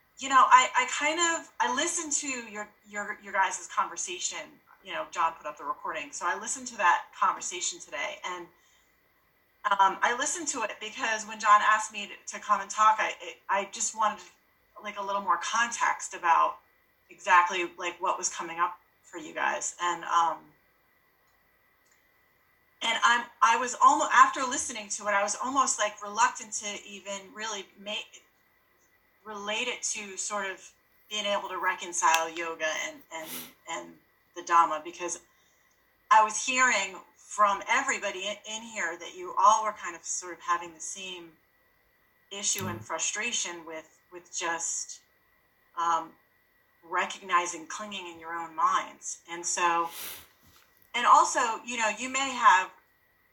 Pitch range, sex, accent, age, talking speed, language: 175-235 Hz, female, American, 30-49, 160 wpm, English